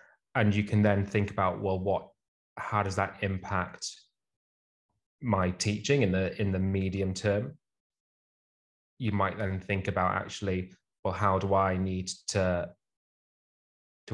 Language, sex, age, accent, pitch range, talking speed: English, male, 20-39, British, 95-105 Hz, 140 wpm